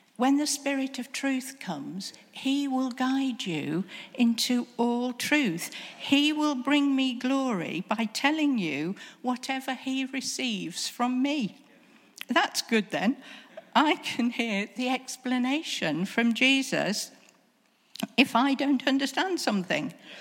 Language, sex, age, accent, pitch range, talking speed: English, female, 50-69, British, 195-255 Hz, 120 wpm